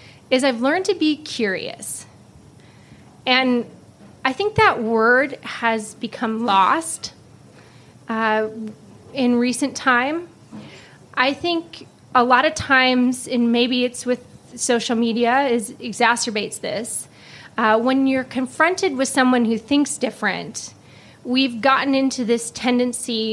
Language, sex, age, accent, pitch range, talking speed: English, female, 20-39, American, 225-265 Hz, 120 wpm